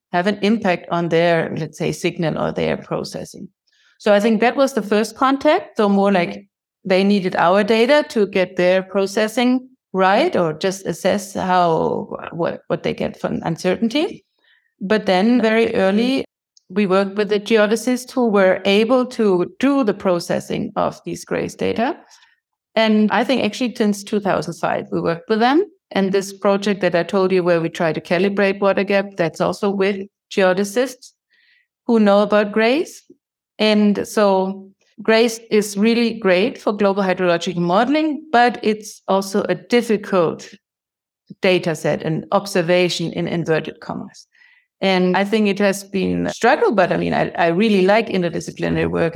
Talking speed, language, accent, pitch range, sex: 160 wpm, English, German, 180-225 Hz, female